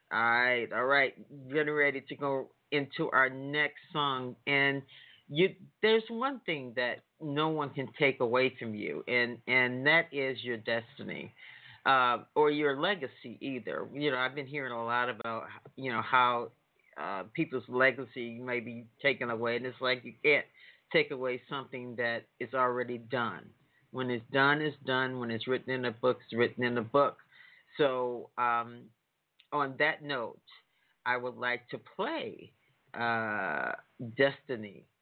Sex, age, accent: male, 40-59, American